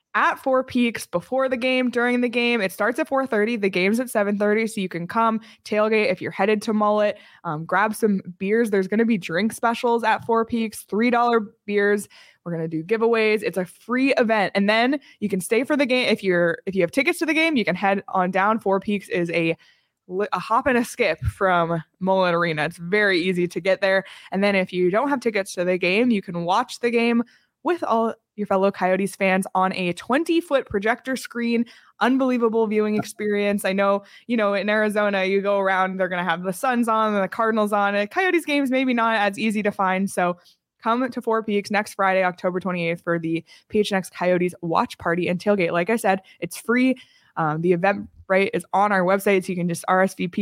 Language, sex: English, female